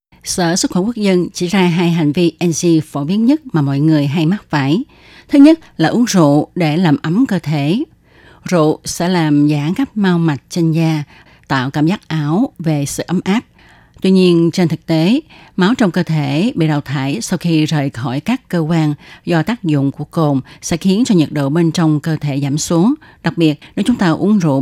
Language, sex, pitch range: Chinese, female, 150-190 Hz